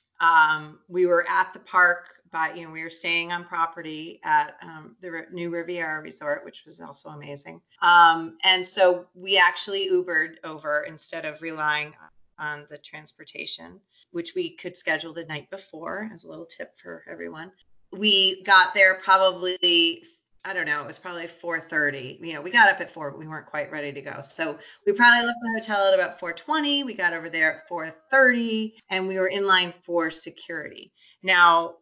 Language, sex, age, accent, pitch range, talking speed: English, female, 30-49, American, 160-195 Hz, 185 wpm